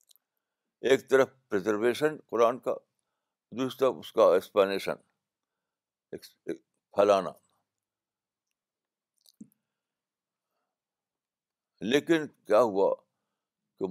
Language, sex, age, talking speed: Urdu, male, 60-79, 65 wpm